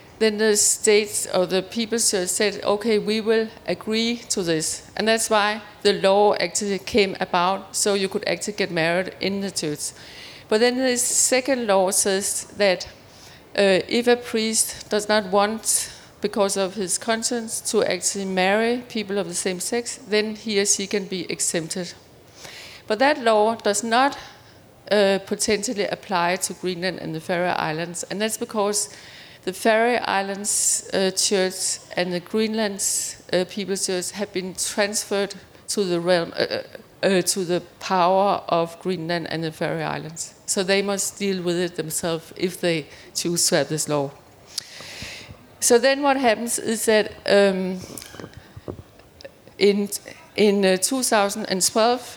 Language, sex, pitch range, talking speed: Danish, female, 185-220 Hz, 155 wpm